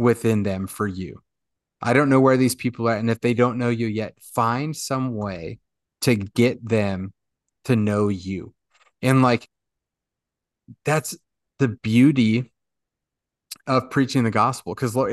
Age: 30-49